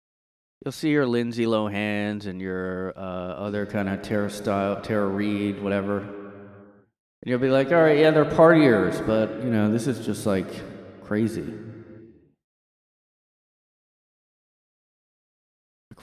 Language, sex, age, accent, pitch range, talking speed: English, male, 20-39, American, 95-125 Hz, 125 wpm